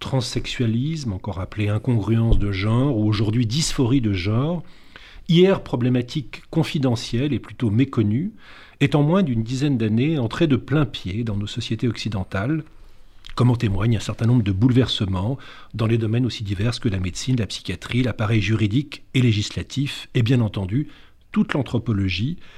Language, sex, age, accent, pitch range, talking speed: French, male, 40-59, French, 110-145 Hz, 155 wpm